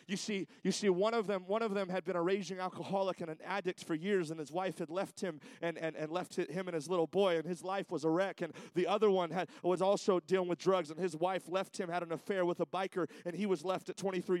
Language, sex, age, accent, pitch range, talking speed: English, male, 30-49, American, 175-205 Hz, 285 wpm